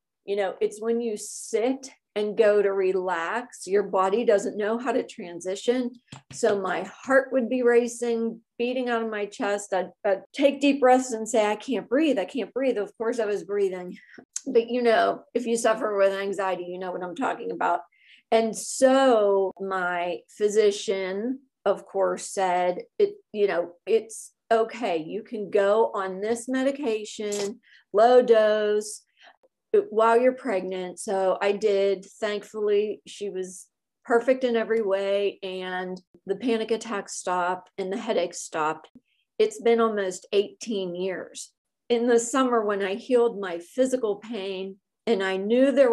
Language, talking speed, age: English, 155 wpm, 40-59